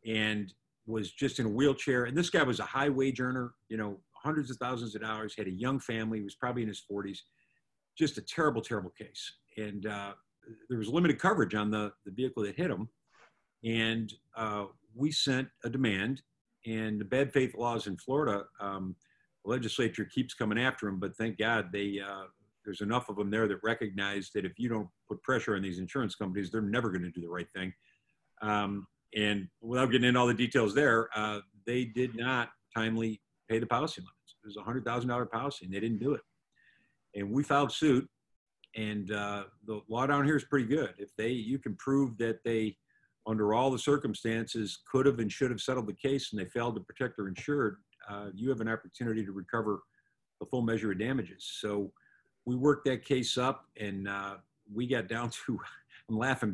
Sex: male